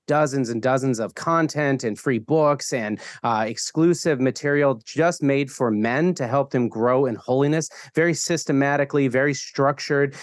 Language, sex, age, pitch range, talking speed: English, male, 30-49, 120-150 Hz, 155 wpm